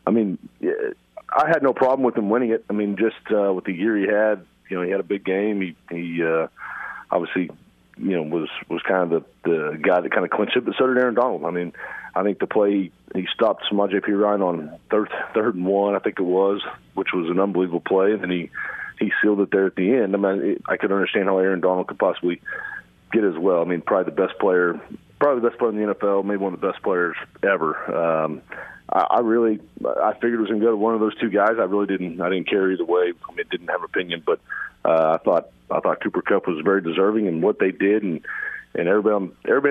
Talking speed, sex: 250 wpm, male